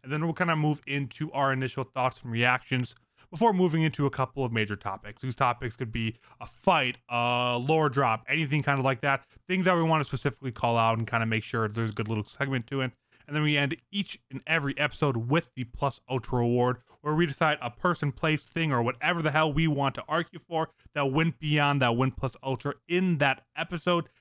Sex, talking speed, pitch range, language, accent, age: male, 230 wpm, 120-155 Hz, English, American, 20-39